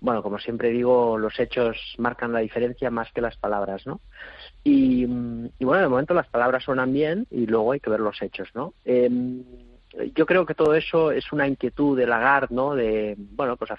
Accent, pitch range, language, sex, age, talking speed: Spanish, 110-135 Hz, Spanish, male, 30-49, 205 wpm